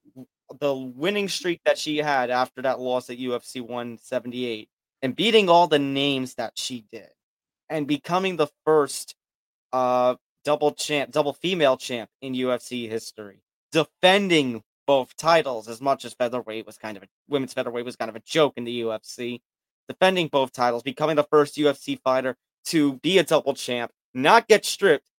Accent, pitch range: American, 120-150 Hz